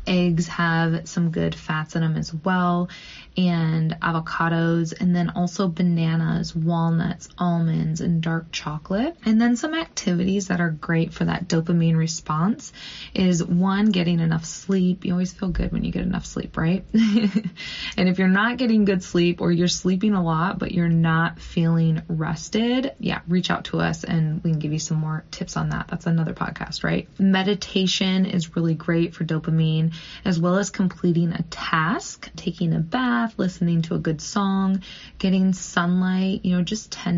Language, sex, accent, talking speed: English, female, American, 175 wpm